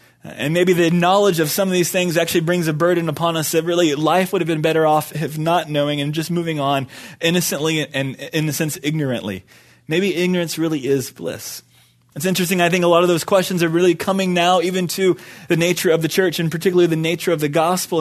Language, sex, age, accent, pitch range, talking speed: English, male, 20-39, American, 150-180 Hz, 230 wpm